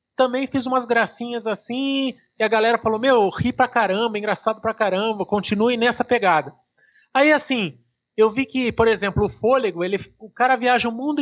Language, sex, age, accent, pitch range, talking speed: Portuguese, male, 20-39, Brazilian, 190-235 Hz, 175 wpm